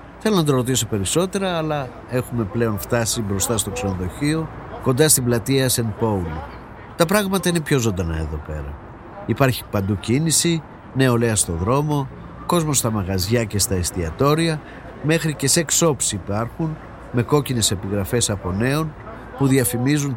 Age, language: 50-69, Greek